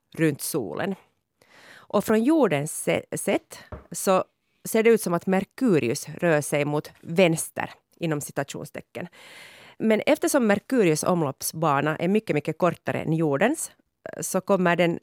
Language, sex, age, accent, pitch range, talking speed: Swedish, female, 30-49, Finnish, 155-205 Hz, 130 wpm